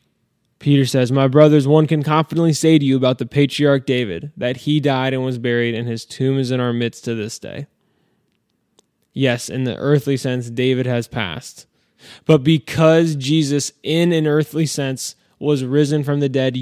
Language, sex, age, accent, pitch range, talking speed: English, male, 10-29, American, 125-150 Hz, 180 wpm